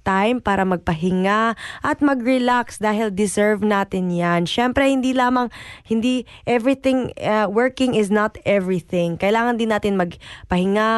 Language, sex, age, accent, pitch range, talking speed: Filipino, female, 20-39, native, 195-240 Hz, 115 wpm